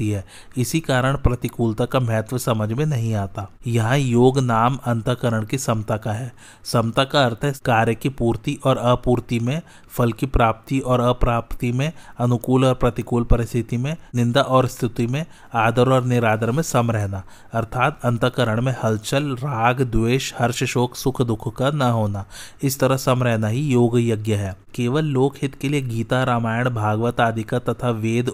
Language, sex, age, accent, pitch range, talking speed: Hindi, male, 30-49, native, 115-130 Hz, 130 wpm